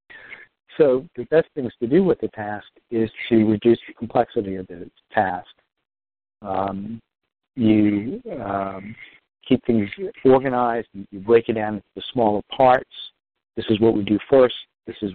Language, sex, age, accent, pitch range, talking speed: English, male, 50-69, American, 105-120 Hz, 150 wpm